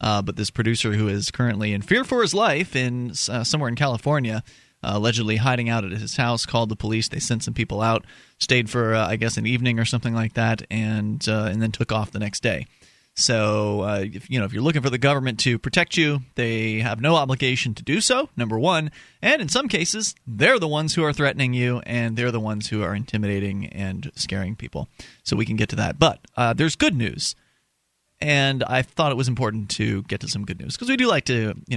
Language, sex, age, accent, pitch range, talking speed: English, male, 30-49, American, 110-150 Hz, 235 wpm